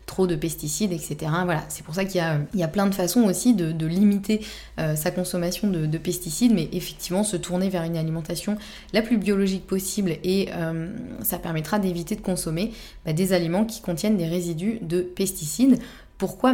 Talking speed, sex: 190 wpm, female